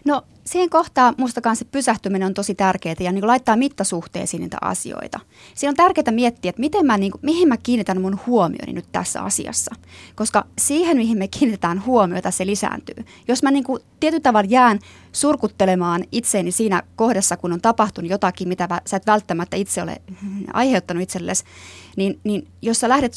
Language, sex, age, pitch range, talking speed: Finnish, female, 30-49, 185-250 Hz, 175 wpm